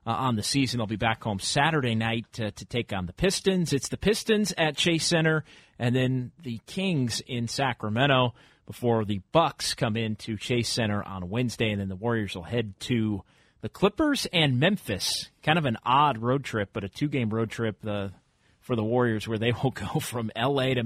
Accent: American